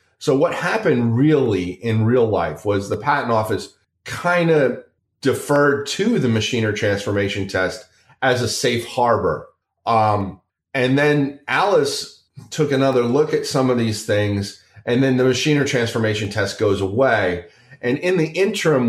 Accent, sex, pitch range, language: American, male, 105-135 Hz, English